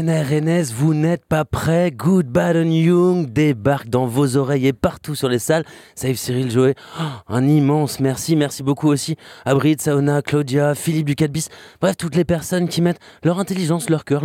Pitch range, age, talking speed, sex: 130-165 Hz, 20-39, 185 wpm, male